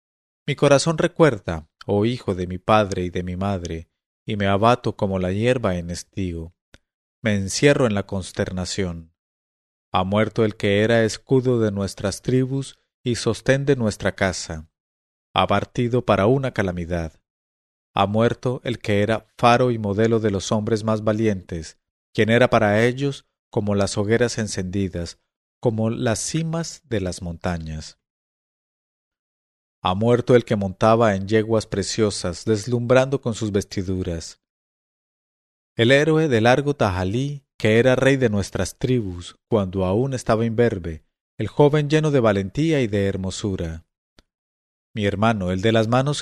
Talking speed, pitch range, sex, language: 145 wpm, 95-120 Hz, male, English